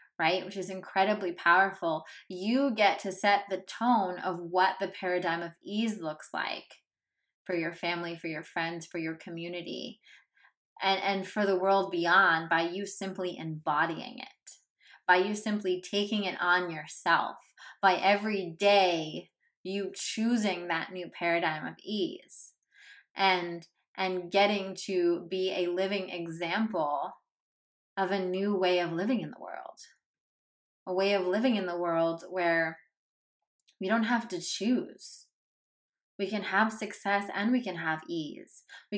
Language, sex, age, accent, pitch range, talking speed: English, female, 20-39, American, 180-215 Hz, 150 wpm